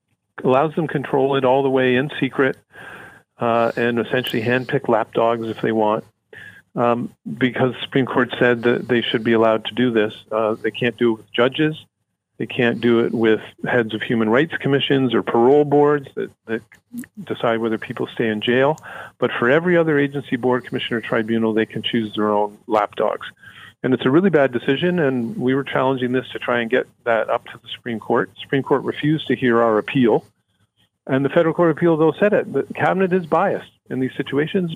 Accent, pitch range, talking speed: American, 115-140 Hz, 205 wpm